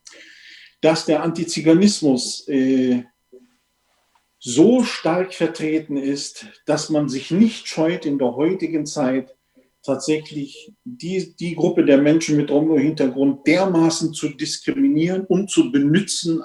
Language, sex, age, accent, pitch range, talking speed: German, male, 50-69, German, 145-230 Hz, 115 wpm